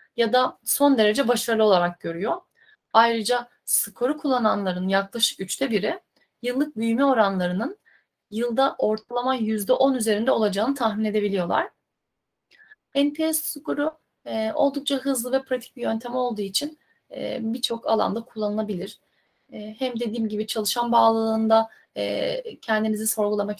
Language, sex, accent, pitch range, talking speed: Turkish, female, native, 215-255 Hz, 120 wpm